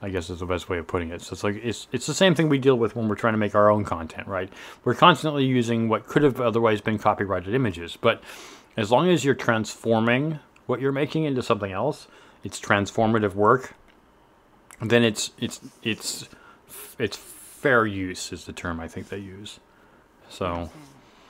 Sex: male